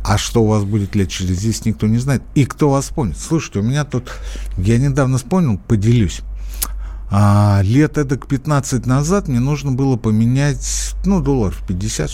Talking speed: 180 wpm